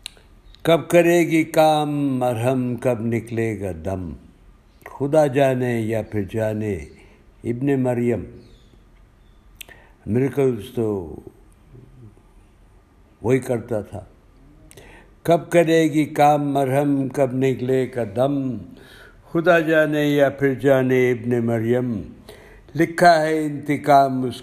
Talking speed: 100 wpm